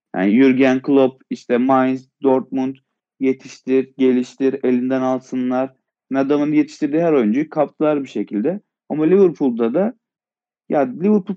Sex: male